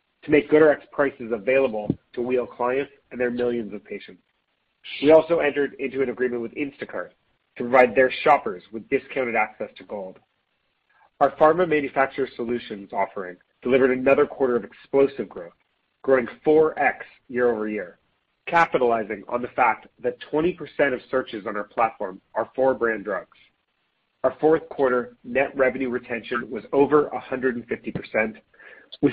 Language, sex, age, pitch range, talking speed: English, male, 40-59, 120-140 Hz, 145 wpm